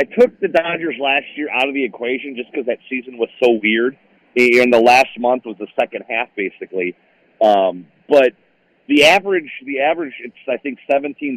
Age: 40-59